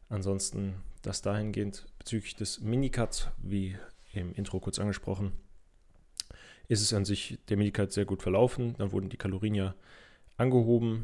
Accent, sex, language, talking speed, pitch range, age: German, male, German, 140 wpm, 95-110 Hz, 20-39